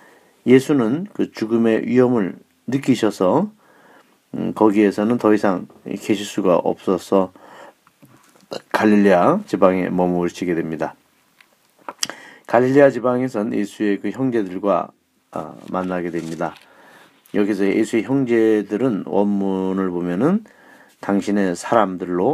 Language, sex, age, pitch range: Korean, male, 40-59, 95-125 Hz